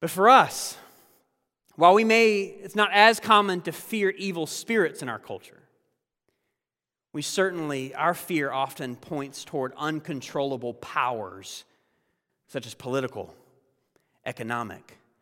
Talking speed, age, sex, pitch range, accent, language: 120 wpm, 30-49, male, 120-190 Hz, American, English